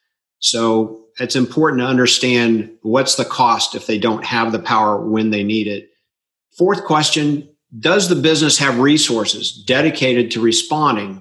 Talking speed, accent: 150 wpm, American